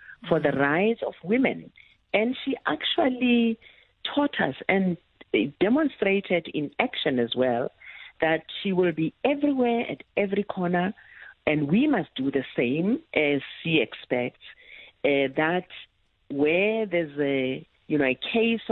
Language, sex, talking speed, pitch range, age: English, female, 135 wpm, 150-215 Hz, 50-69